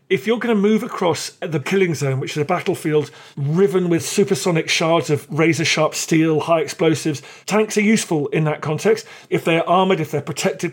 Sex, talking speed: male, 190 wpm